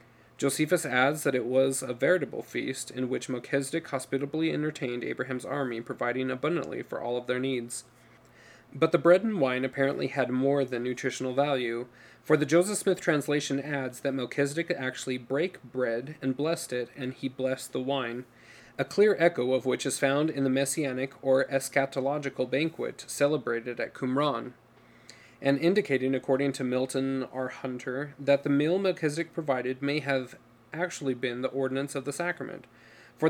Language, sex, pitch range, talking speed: English, male, 125-150 Hz, 160 wpm